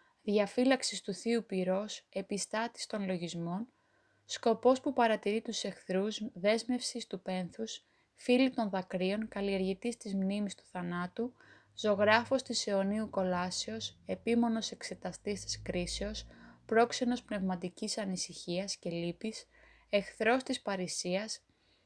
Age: 20-39